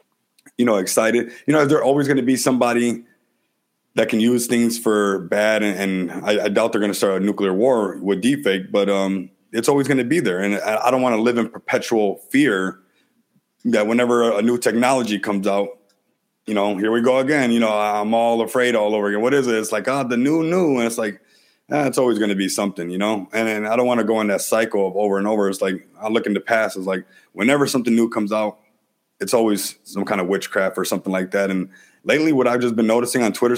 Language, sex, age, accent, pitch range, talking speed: English, male, 30-49, American, 100-120 Hz, 250 wpm